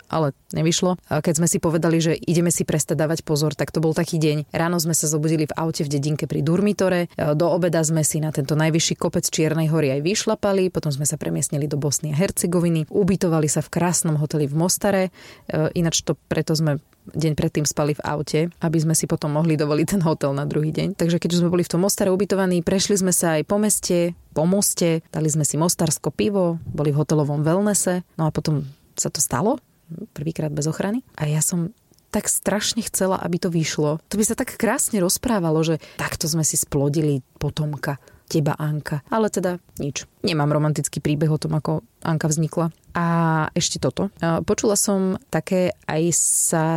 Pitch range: 155-180 Hz